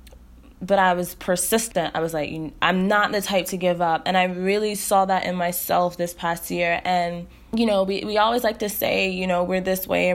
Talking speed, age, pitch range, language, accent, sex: 230 wpm, 20-39, 175-210 Hz, English, American, female